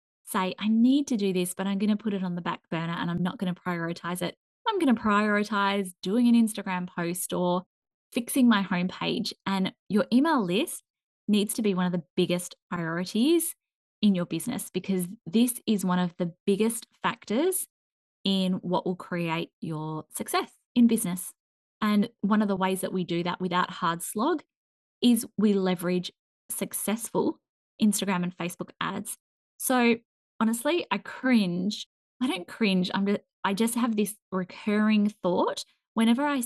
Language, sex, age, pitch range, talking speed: English, female, 10-29, 180-230 Hz, 170 wpm